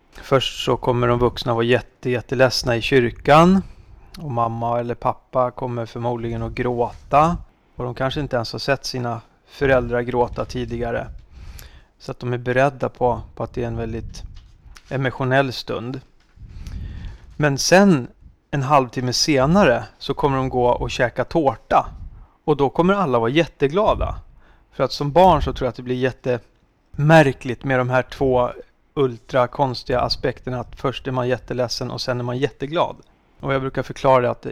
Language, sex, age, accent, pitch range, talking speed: Swedish, male, 30-49, native, 120-135 Hz, 160 wpm